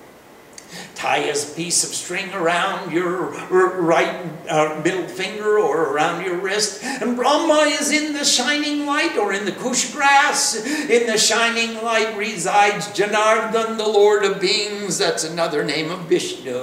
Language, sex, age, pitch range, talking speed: English, male, 60-79, 185-245 Hz, 150 wpm